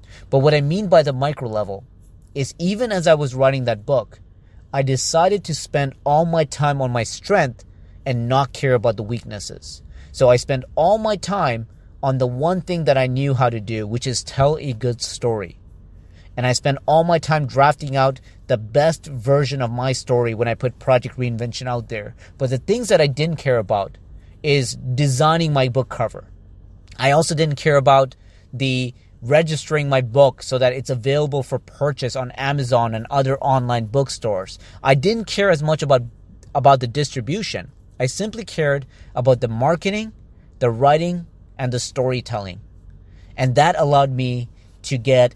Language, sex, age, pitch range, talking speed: English, male, 30-49, 115-140 Hz, 180 wpm